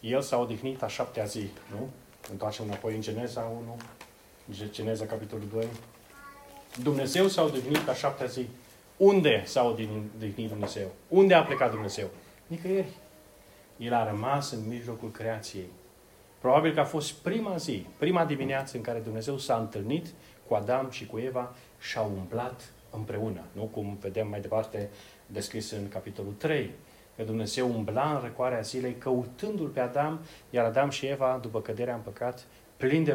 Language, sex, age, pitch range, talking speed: Romanian, male, 30-49, 105-130 Hz, 155 wpm